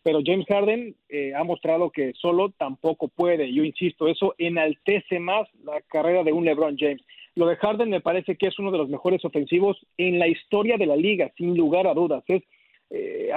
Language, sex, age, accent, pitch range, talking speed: Spanish, male, 40-59, Mexican, 160-195 Hz, 200 wpm